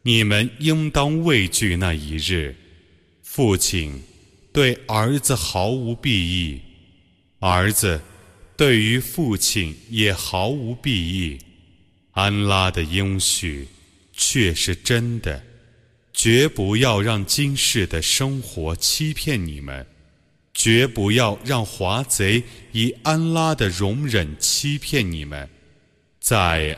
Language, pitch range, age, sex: Arabic, 85-120 Hz, 30-49, male